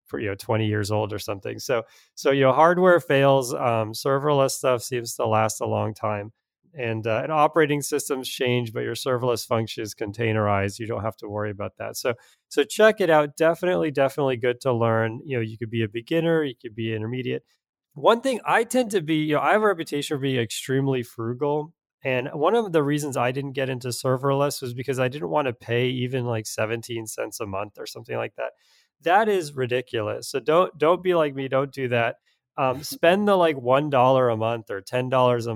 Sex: male